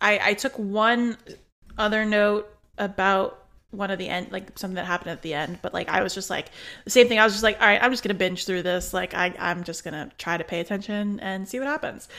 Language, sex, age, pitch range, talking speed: English, female, 20-39, 190-235 Hz, 265 wpm